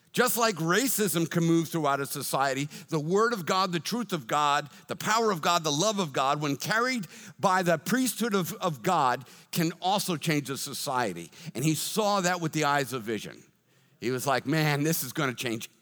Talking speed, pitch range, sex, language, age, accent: 205 wpm, 145-200 Hz, male, English, 50-69, American